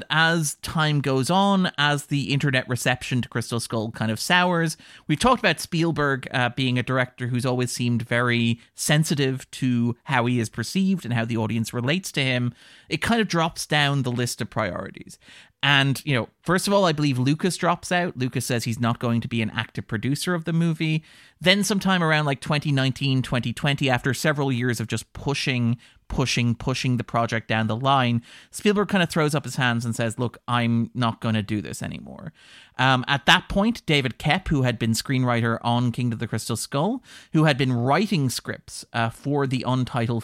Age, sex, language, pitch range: 30-49, male, English, 115-150 Hz